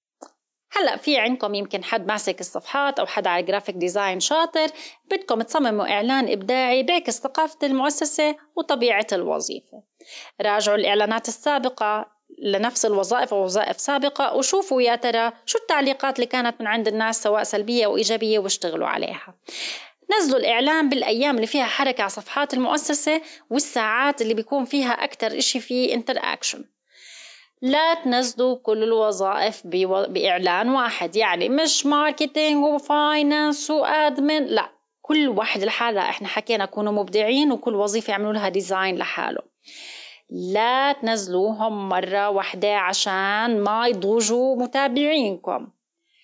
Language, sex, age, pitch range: Arabic, female, 20-39, 210-285 Hz